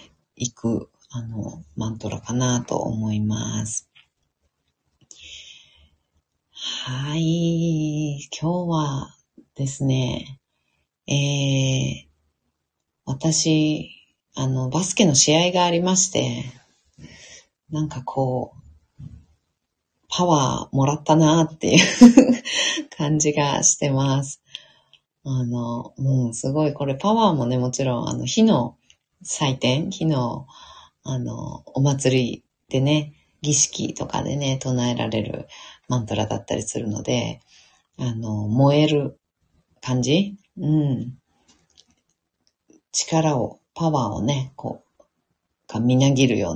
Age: 40-59